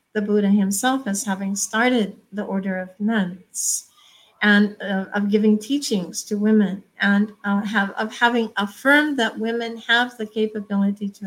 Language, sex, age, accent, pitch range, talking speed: English, female, 50-69, American, 190-225 Hz, 155 wpm